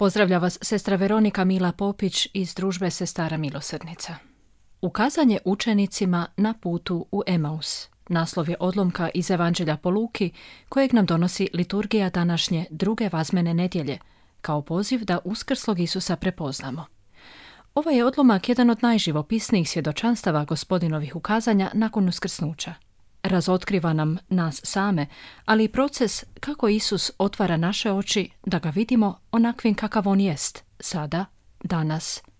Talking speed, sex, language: 130 wpm, female, Croatian